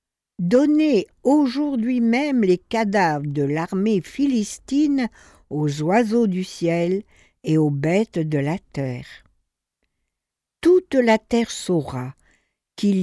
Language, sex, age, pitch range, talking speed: French, female, 60-79, 150-235 Hz, 105 wpm